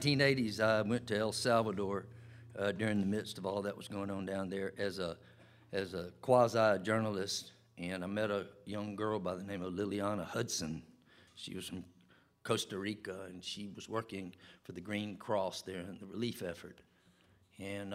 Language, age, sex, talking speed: English, 50-69, male, 185 wpm